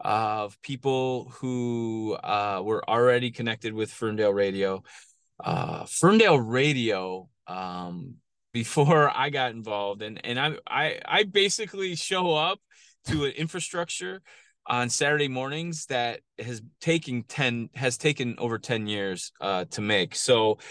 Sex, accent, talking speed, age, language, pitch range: male, American, 130 wpm, 20-39, English, 110-150 Hz